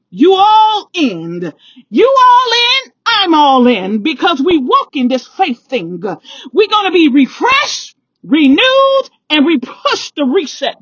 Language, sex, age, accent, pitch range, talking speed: English, female, 40-59, American, 250-390 Hz, 150 wpm